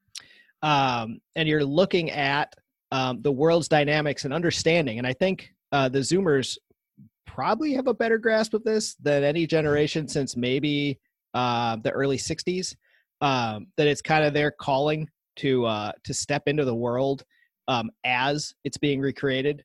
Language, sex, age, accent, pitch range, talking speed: English, male, 30-49, American, 125-160 Hz, 160 wpm